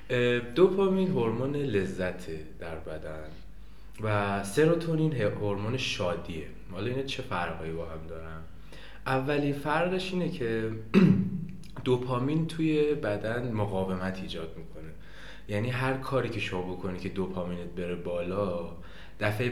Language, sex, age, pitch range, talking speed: Persian, male, 20-39, 90-130 Hz, 115 wpm